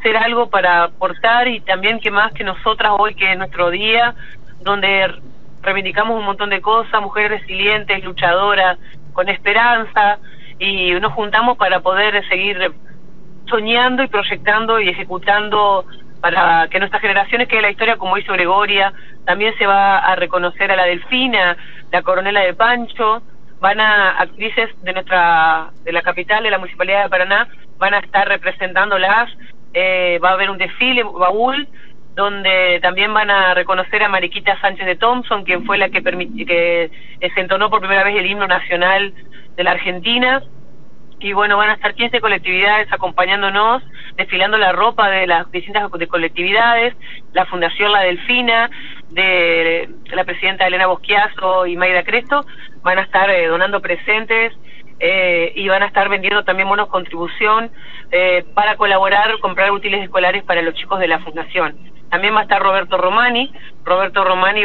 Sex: female